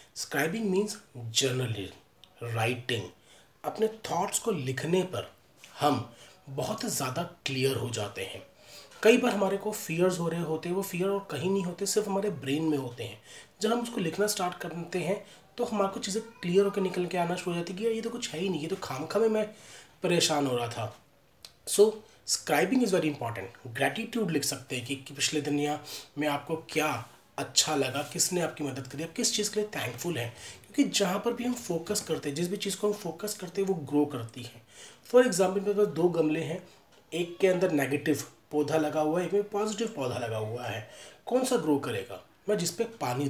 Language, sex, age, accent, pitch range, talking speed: Hindi, male, 30-49, native, 140-200 Hz, 210 wpm